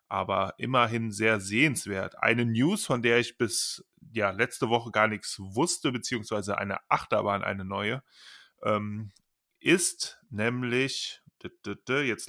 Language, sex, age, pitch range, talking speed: German, male, 30-49, 110-140 Hz, 120 wpm